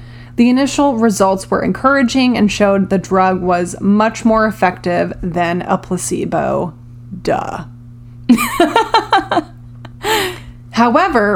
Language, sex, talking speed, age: English, female, 95 wpm, 30-49